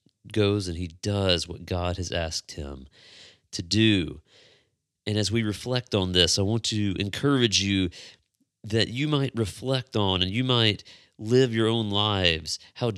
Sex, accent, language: male, American, English